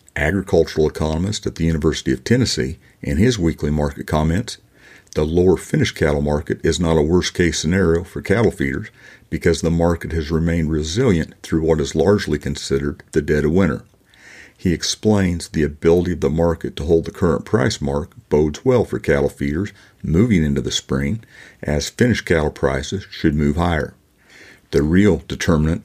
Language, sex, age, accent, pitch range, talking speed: English, male, 50-69, American, 75-85 Hz, 165 wpm